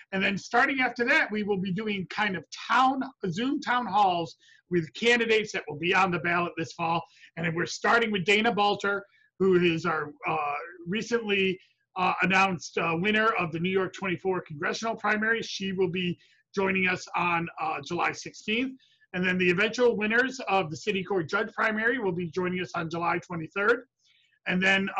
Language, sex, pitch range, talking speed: English, male, 175-210 Hz, 180 wpm